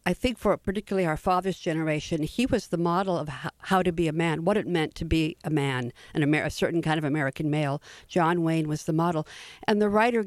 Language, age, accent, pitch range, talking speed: English, 50-69, American, 160-190 Hz, 220 wpm